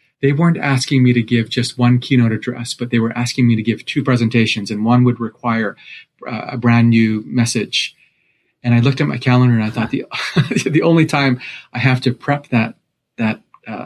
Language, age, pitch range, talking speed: English, 30-49, 115-135 Hz, 200 wpm